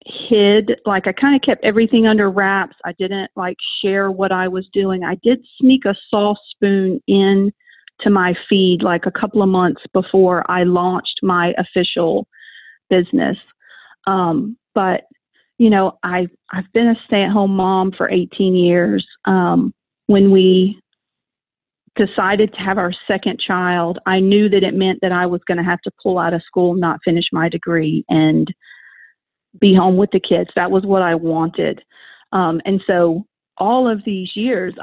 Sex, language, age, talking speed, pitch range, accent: female, English, 40-59, 170 wpm, 180-225 Hz, American